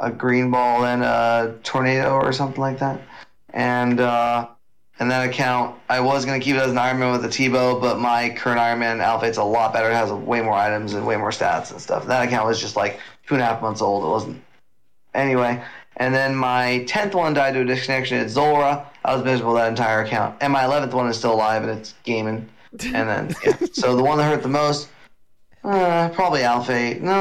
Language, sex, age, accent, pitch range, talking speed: English, male, 20-39, American, 120-140 Hz, 230 wpm